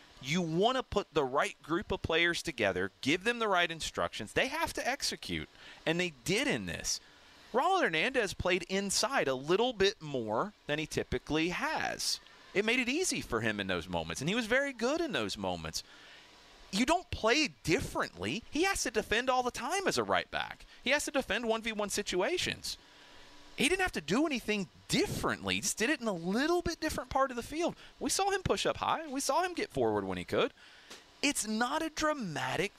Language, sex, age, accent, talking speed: English, male, 30-49, American, 205 wpm